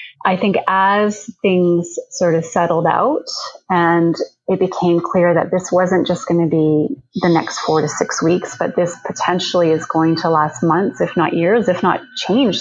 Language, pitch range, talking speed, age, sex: English, 170-200 Hz, 185 wpm, 30-49, female